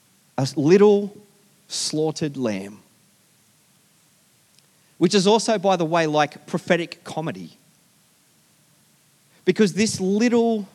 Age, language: 30-49, English